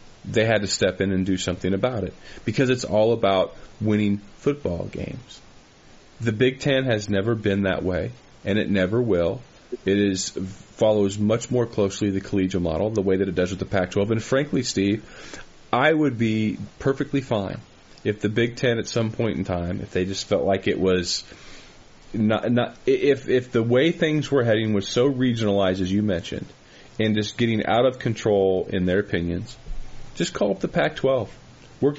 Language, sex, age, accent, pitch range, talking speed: English, male, 30-49, American, 100-130 Hz, 190 wpm